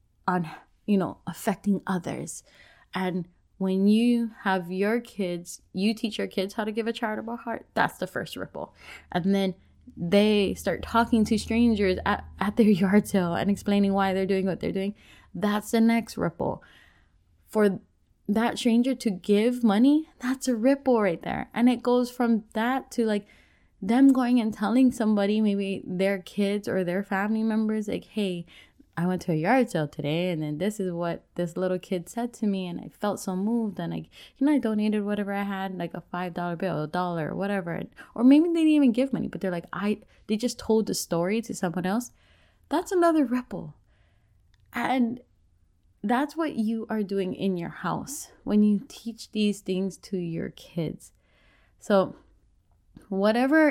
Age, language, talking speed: 20-39, English, 180 wpm